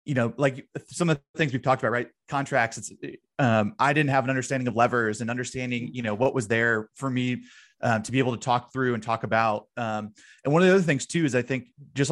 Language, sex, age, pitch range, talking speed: English, male, 20-39, 115-135 Hz, 260 wpm